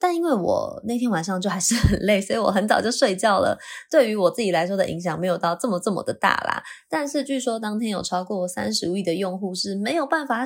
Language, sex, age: Chinese, female, 20-39